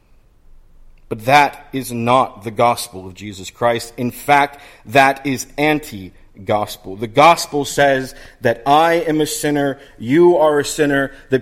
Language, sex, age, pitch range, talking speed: English, male, 40-59, 110-155 Hz, 140 wpm